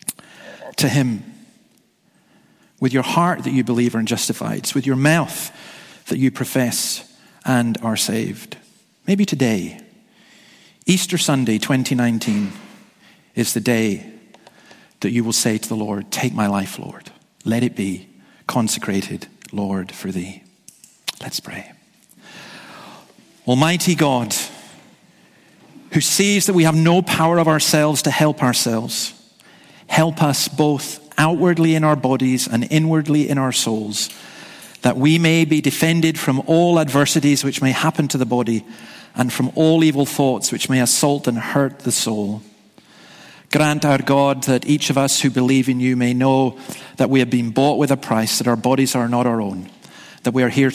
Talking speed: 155 wpm